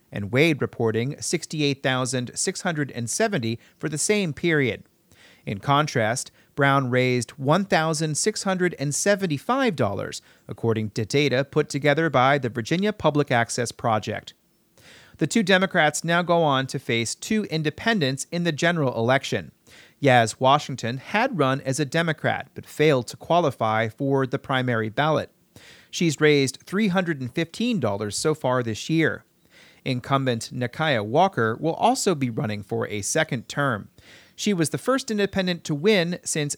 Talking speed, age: 130 wpm, 40-59